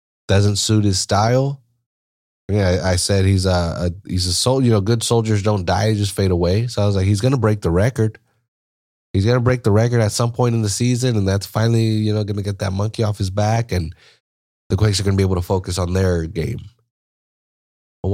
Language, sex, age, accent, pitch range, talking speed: English, male, 20-39, American, 90-115 Hz, 240 wpm